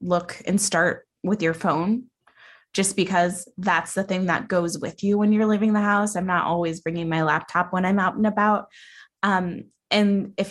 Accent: American